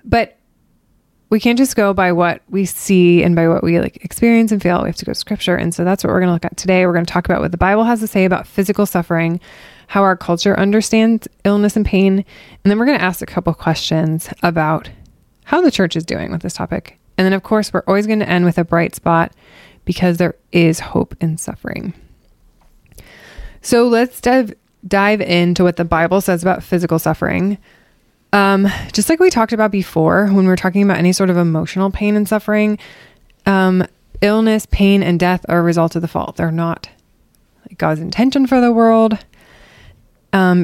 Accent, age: American, 20-39